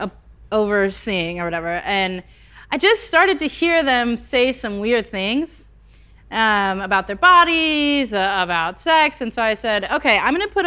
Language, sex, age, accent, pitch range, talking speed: English, female, 30-49, American, 205-290 Hz, 165 wpm